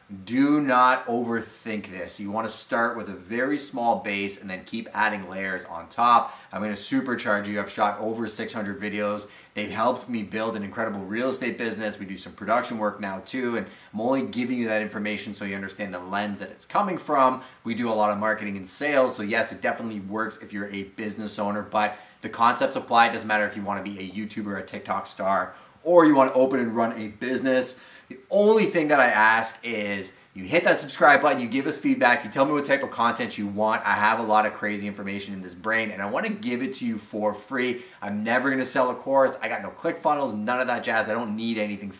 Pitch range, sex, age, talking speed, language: 105-120 Hz, male, 20-39, 245 wpm, English